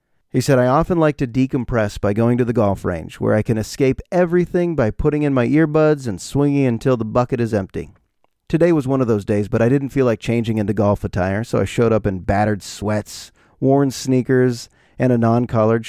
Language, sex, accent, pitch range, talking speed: English, male, American, 110-145 Hz, 215 wpm